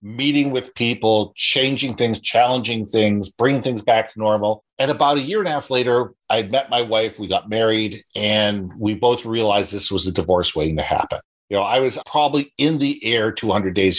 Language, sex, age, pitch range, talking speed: English, male, 50-69, 105-140 Hz, 205 wpm